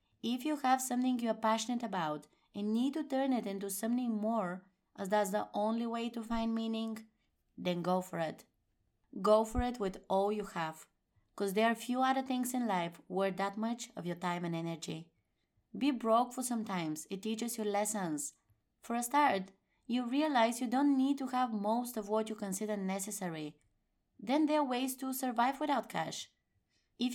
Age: 20-39